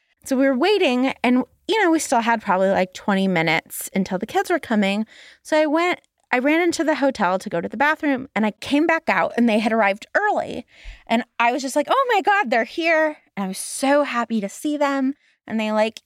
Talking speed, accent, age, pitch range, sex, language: 235 wpm, American, 20-39, 225-310 Hz, female, English